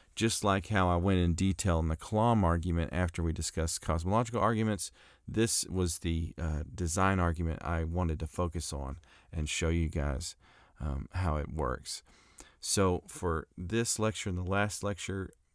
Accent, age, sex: American, 40-59, male